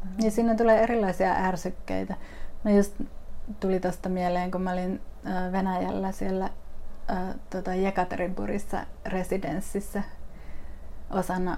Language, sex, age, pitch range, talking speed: Finnish, female, 30-49, 175-195 Hz, 110 wpm